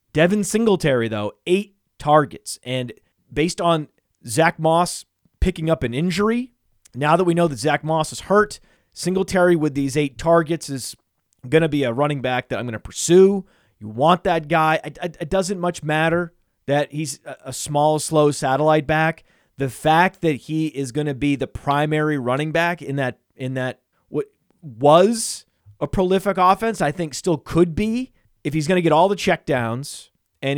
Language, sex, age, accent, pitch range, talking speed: English, male, 30-49, American, 130-170 Hz, 175 wpm